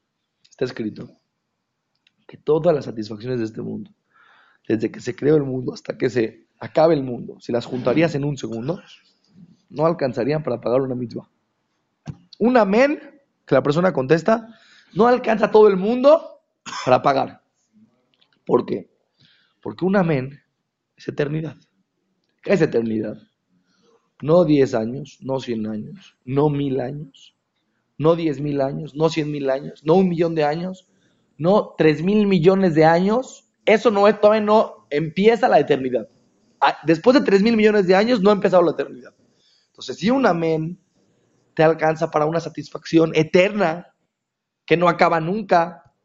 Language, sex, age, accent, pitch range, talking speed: Spanish, male, 40-59, Mexican, 140-200 Hz, 145 wpm